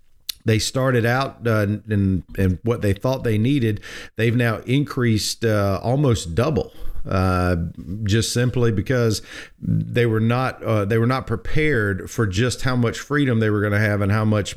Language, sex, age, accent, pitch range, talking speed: English, male, 50-69, American, 105-130 Hz, 175 wpm